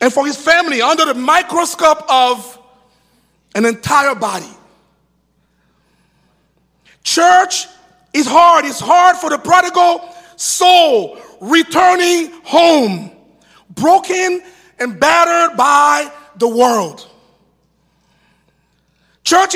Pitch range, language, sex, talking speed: 210-325 Hz, English, male, 90 wpm